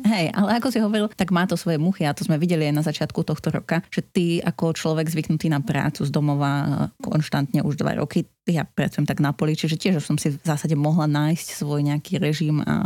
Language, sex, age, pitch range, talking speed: Slovak, female, 30-49, 150-185 Hz, 230 wpm